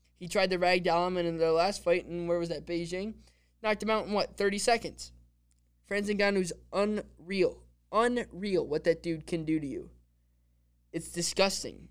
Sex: male